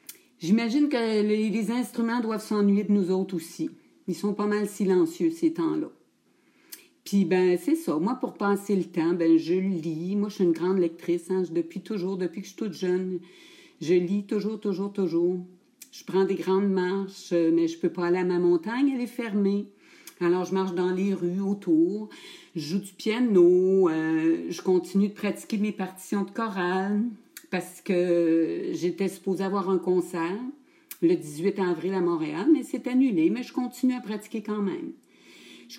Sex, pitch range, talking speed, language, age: female, 180-240 Hz, 185 wpm, French, 60-79